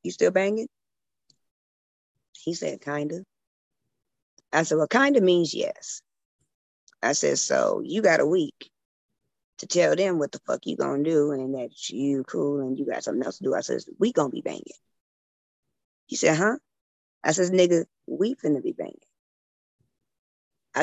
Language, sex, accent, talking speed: English, female, American, 165 wpm